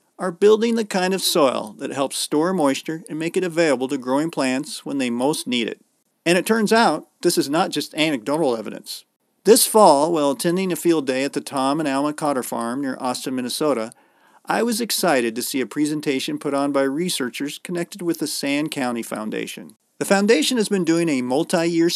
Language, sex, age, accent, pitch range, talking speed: English, male, 40-59, American, 135-175 Hz, 200 wpm